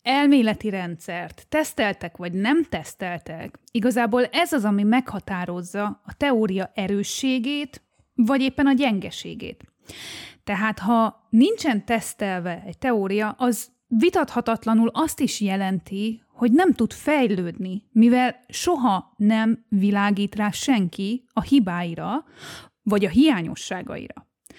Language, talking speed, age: Hungarian, 105 wpm, 30-49